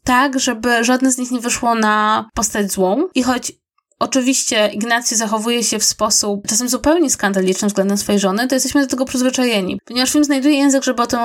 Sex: female